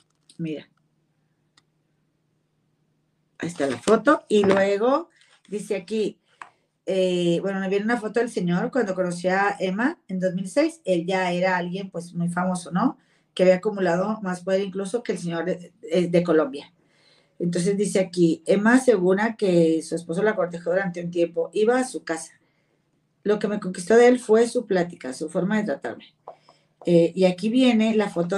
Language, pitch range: Spanish, 170-205 Hz